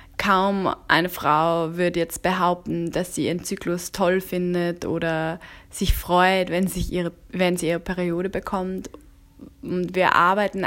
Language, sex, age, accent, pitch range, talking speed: German, female, 20-39, German, 165-195 Hz, 135 wpm